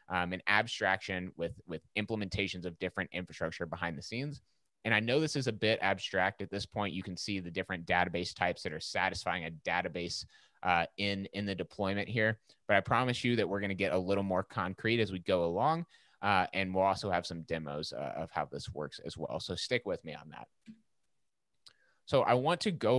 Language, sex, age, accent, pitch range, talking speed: English, male, 30-49, American, 90-110 Hz, 215 wpm